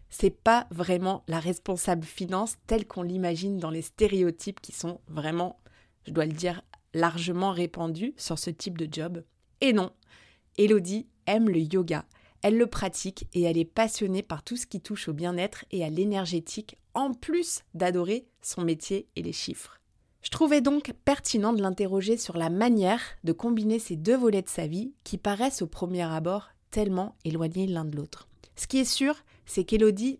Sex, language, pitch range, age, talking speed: female, French, 175-230 Hz, 30-49, 180 wpm